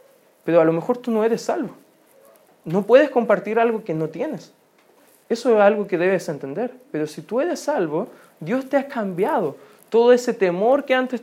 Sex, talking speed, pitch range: male, 185 wpm, 180-235 Hz